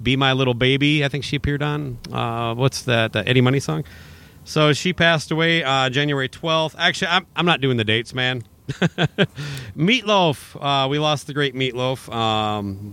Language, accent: English, American